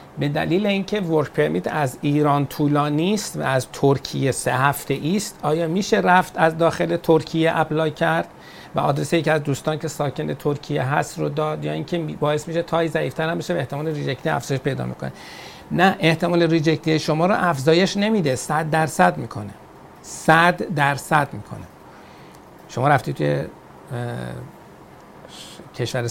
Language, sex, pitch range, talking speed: Persian, male, 130-165 Hz, 145 wpm